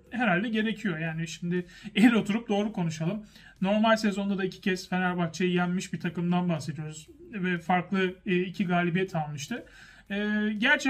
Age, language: 40-59, Turkish